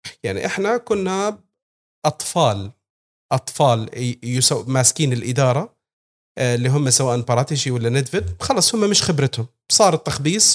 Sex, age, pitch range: male, 40-59, 120-155 Hz